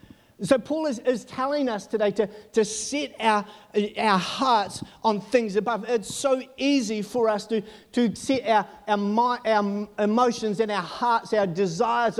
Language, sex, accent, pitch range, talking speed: English, male, Australian, 200-245 Hz, 160 wpm